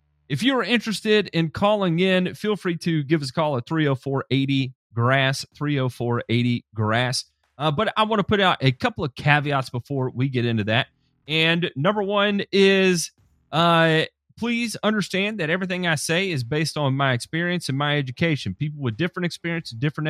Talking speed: 195 wpm